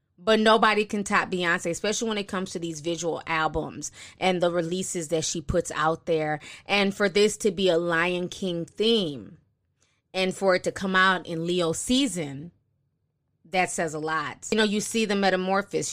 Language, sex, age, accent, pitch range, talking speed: English, female, 20-39, American, 170-195 Hz, 185 wpm